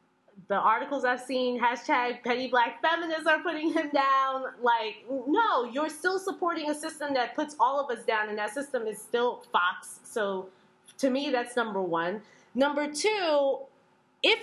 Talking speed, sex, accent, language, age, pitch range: 165 wpm, female, American, English, 20-39, 230-305 Hz